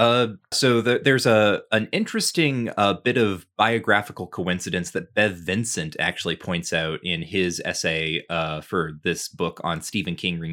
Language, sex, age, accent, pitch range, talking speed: English, male, 20-39, American, 90-115 Hz, 160 wpm